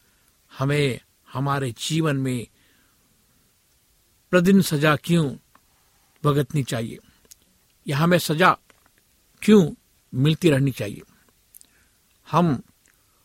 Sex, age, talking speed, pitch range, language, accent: male, 60-79, 75 wpm, 125-170 Hz, Hindi, native